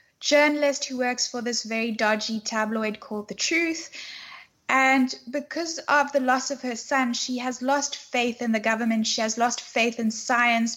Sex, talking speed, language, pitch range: female, 180 wpm, English, 210-260 Hz